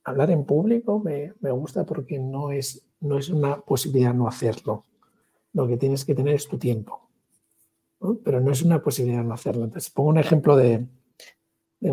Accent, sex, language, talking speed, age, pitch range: Spanish, male, Spanish, 185 wpm, 60-79, 125-175 Hz